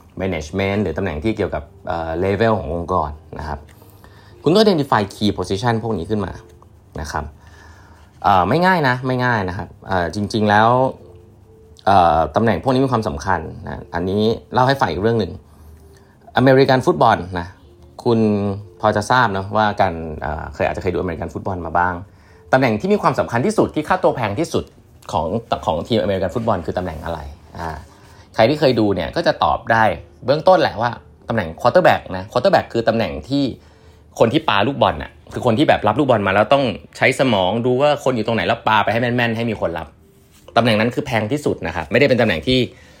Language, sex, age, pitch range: Thai, male, 20-39, 85-115 Hz